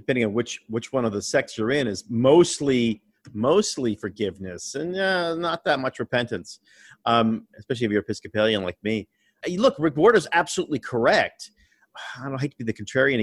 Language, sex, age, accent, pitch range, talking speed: English, male, 40-59, American, 110-145 Hz, 185 wpm